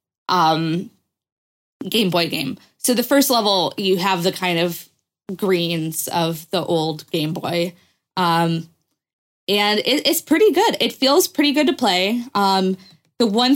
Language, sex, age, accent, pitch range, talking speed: English, female, 10-29, American, 175-225 Hz, 150 wpm